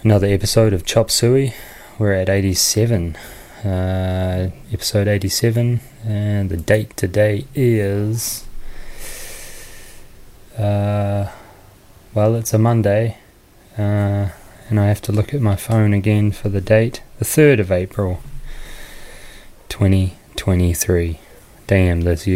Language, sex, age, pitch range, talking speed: English, male, 20-39, 95-110 Hz, 105 wpm